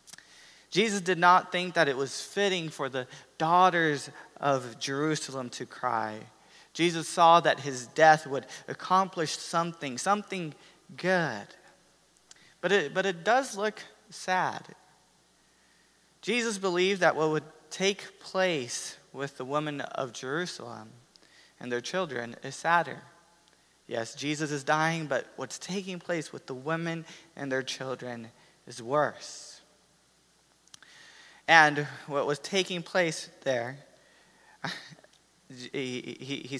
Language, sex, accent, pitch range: English, male, American, 135-175 Hz